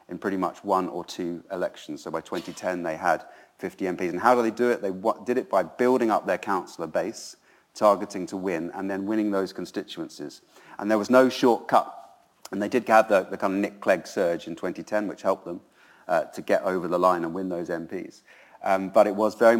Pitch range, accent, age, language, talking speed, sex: 90-110 Hz, British, 30-49, English, 225 wpm, male